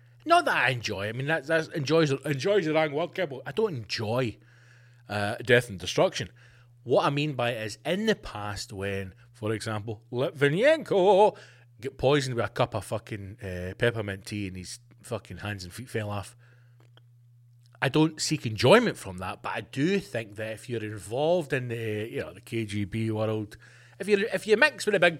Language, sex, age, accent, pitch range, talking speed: English, male, 30-49, British, 120-200 Hz, 195 wpm